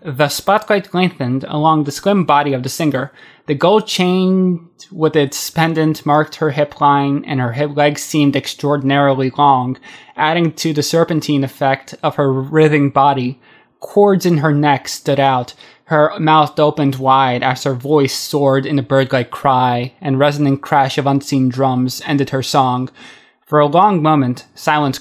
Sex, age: male, 20-39